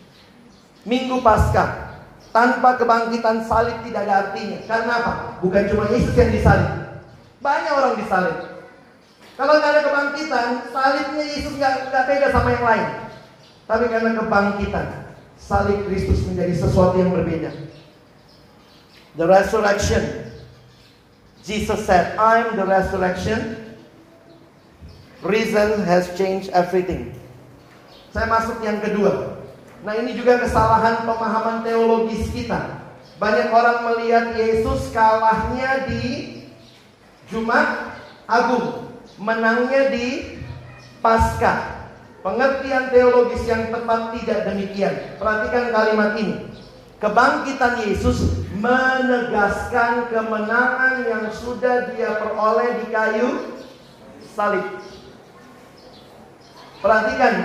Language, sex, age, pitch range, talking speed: Indonesian, male, 40-59, 200-245 Hz, 95 wpm